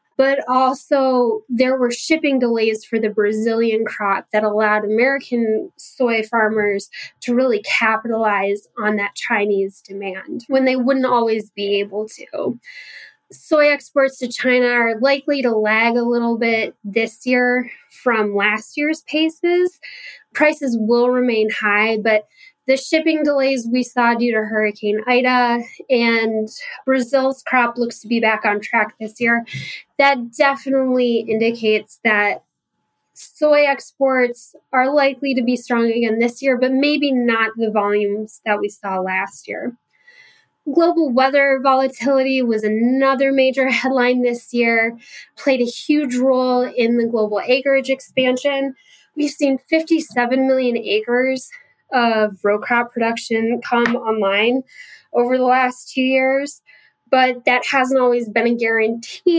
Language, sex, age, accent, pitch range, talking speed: English, female, 10-29, American, 220-270 Hz, 135 wpm